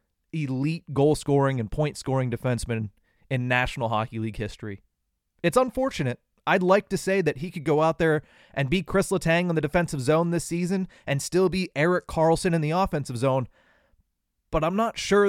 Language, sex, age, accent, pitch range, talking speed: English, male, 30-49, American, 125-170 Hz, 185 wpm